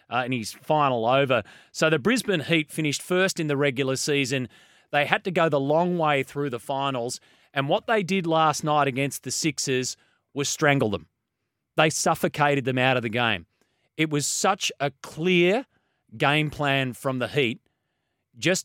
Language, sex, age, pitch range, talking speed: English, male, 30-49, 135-170 Hz, 175 wpm